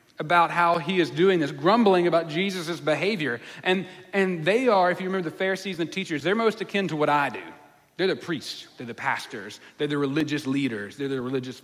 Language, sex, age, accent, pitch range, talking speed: English, male, 40-59, American, 150-200 Hz, 215 wpm